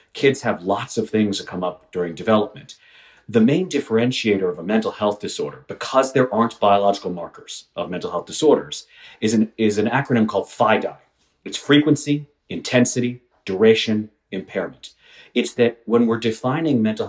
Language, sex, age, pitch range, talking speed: English, male, 40-59, 105-135 Hz, 160 wpm